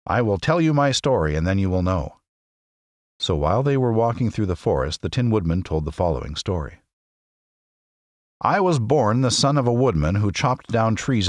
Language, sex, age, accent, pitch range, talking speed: English, male, 50-69, American, 85-125 Hz, 200 wpm